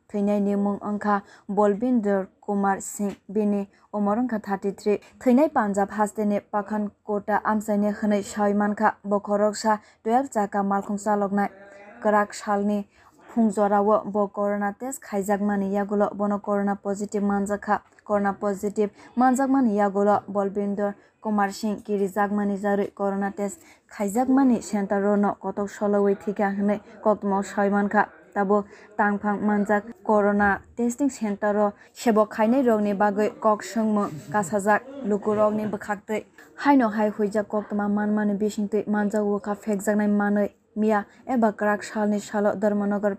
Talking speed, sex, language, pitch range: 105 wpm, female, English, 205-215 Hz